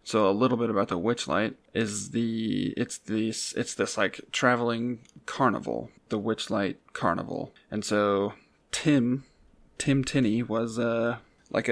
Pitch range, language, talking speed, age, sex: 110-125 Hz, English, 140 wpm, 20-39, male